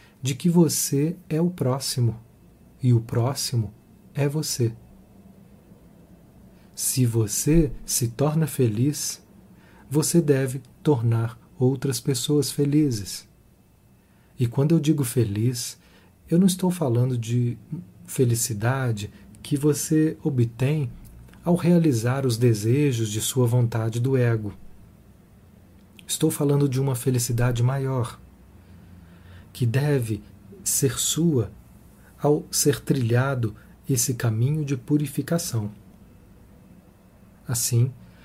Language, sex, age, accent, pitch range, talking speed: Portuguese, male, 40-59, Brazilian, 110-150 Hz, 100 wpm